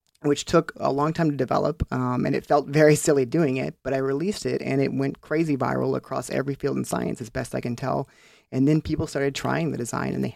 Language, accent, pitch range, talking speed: English, American, 125-145 Hz, 250 wpm